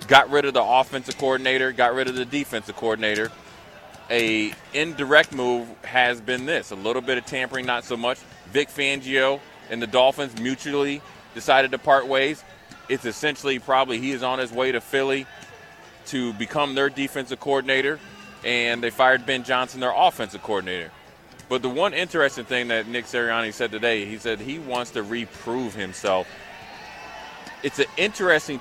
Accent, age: American, 30-49